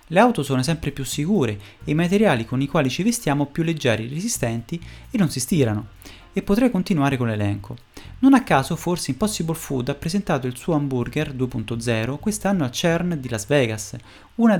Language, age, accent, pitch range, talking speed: Italian, 30-49, native, 120-180 Hz, 185 wpm